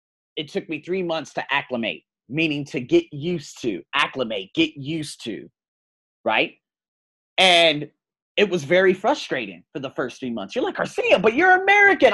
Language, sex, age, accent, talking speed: English, male, 30-49, American, 165 wpm